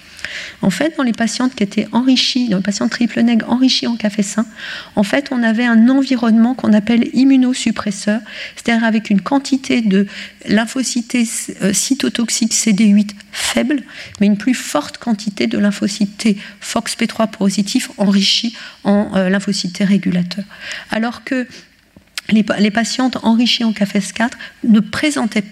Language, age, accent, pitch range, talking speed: French, 40-59, French, 205-250 Hz, 140 wpm